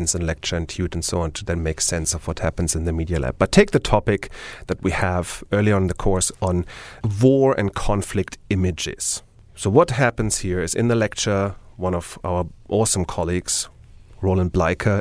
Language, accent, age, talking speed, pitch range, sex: English, German, 40-59, 195 wpm, 90-115 Hz, male